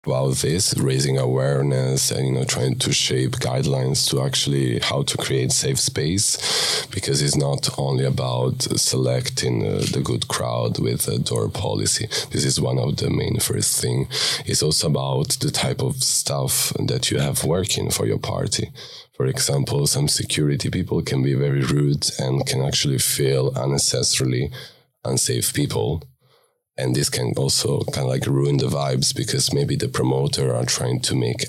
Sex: male